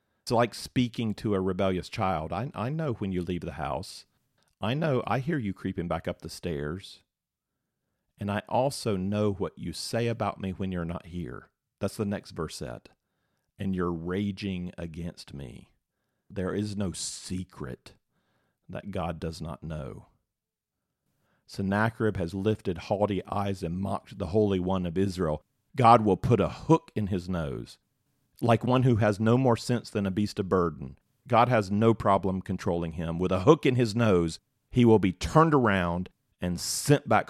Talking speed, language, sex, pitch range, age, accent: 175 wpm, English, male, 90-115 Hz, 40-59, American